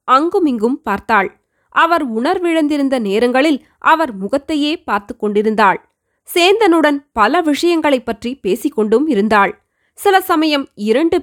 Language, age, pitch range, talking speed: Tamil, 20-39, 230-320 Hz, 90 wpm